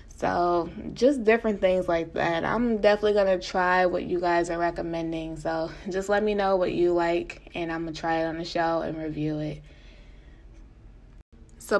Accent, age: American, 20-39